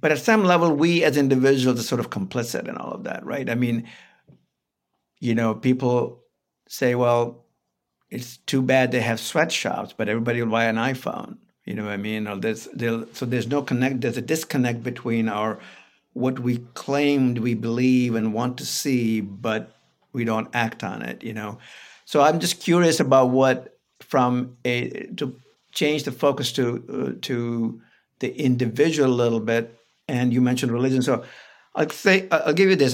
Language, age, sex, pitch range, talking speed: English, 60-79, male, 115-135 Hz, 175 wpm